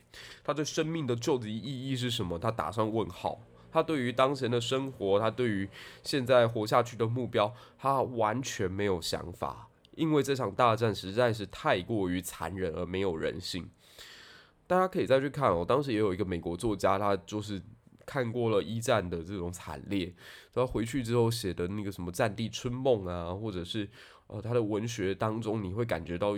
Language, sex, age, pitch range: Chinese, male, 20-39, 95-125 Hz